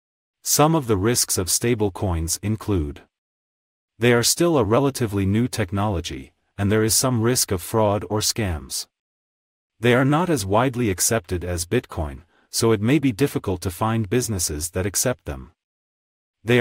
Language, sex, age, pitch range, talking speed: English, male, 30-49, 90-120 Hz, 155 wpm